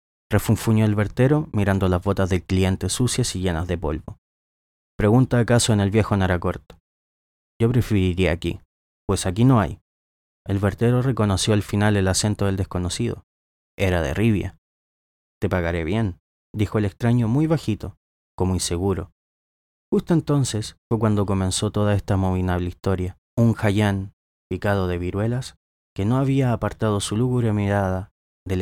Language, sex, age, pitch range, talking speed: Spanish, male, 20-39, 90-110 Hz, 145 wpm